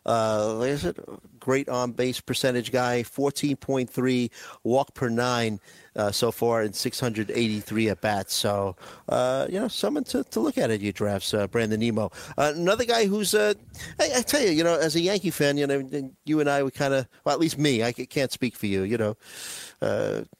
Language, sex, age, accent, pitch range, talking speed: English, male, 50-69, American, 115-140 Hz, 200 wpm